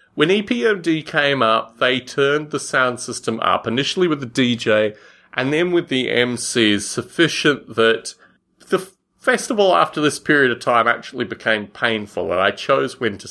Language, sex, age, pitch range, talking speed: English, male, 30-49, 115-155 Hz, 160 wpm